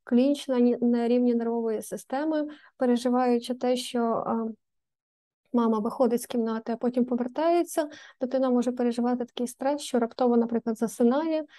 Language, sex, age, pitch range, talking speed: Ukrainian, female, 20-39, 235-265 Hz, 125 wpm